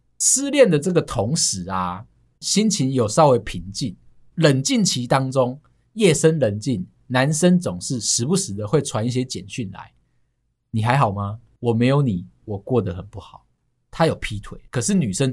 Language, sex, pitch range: Chinese, male, 110-160 Hz